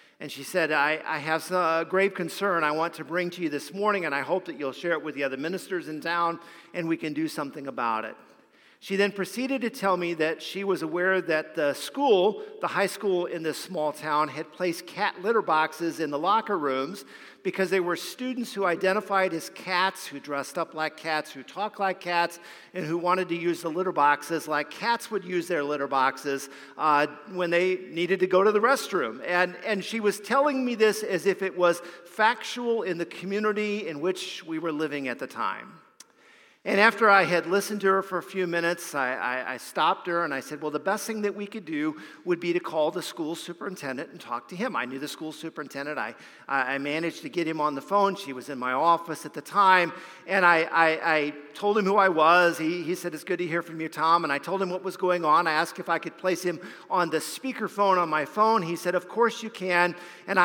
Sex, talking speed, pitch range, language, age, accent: male, 235 wpm, 155-190 Hz, English, 50-69, American